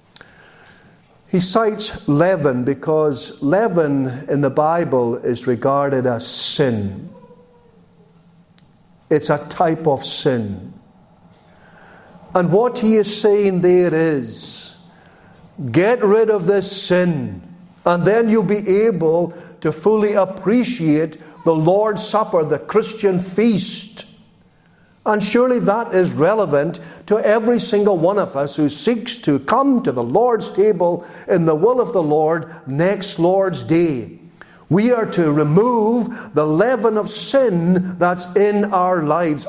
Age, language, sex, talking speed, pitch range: 50-69, English, male, 125 wpm, 155-210 Hz